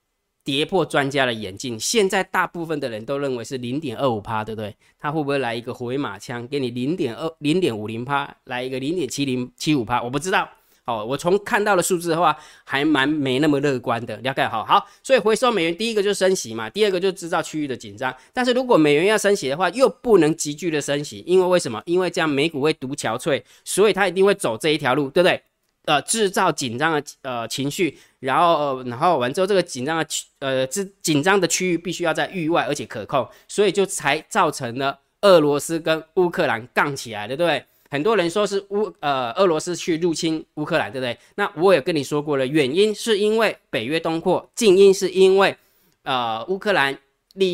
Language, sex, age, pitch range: Chinese, male, 20-39, 135-185 Hz